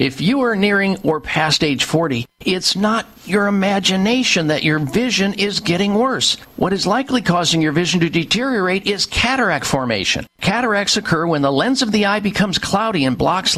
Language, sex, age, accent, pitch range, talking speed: English, male, 50-69, American, 150-210 Hz, 180 wpm